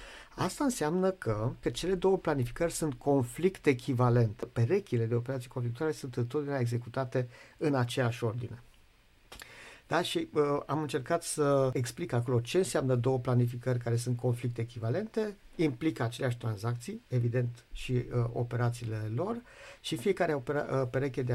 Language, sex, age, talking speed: Romanian, male, 50-69, 125 wpm